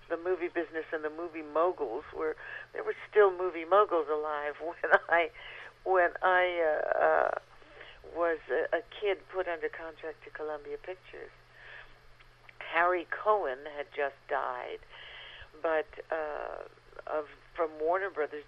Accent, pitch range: American, 155-210 Hz